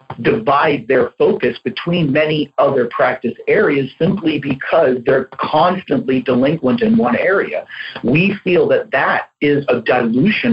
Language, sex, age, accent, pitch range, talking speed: English, male, 50-69, American, 130-195 Hz, 130 wpm